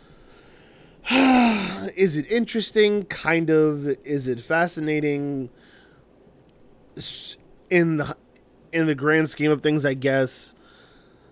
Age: 20-39